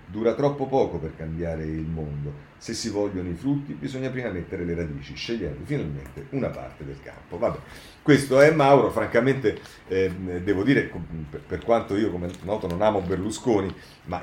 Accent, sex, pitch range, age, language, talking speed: native, male, 90-130 Hz, 40-59, Italian, 175 wpm